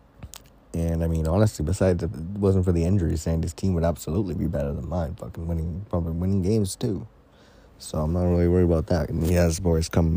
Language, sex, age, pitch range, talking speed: English, male, 20-39, 75-90 Hz, 220 wpm